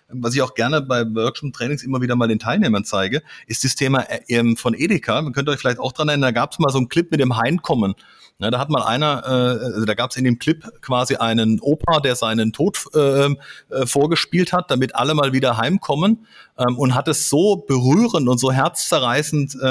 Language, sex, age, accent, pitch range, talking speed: German, male, 40-59, German, 120-155 Hz, 205 wpm